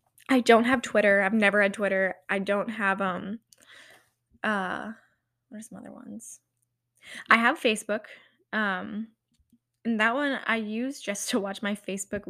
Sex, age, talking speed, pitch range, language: female, 10-29, 155 wpm, 185-235 Hz, English